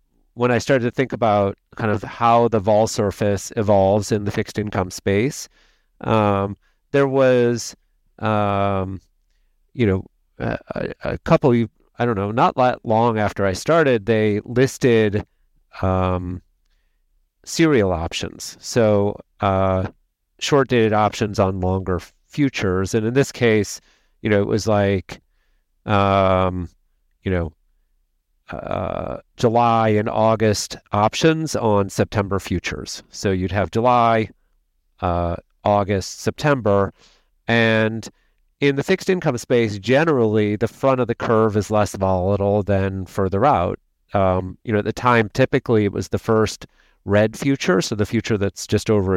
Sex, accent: male, American